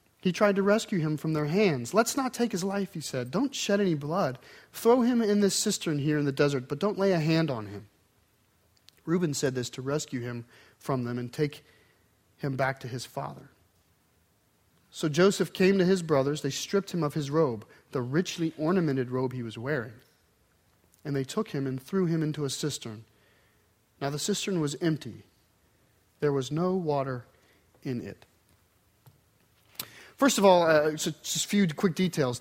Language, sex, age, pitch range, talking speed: English, male, 40-59, 130-190 Hz, 185 wpm